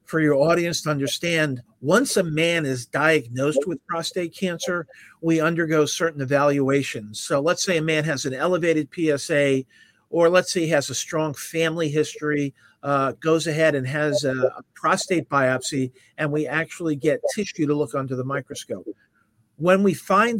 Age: 50-69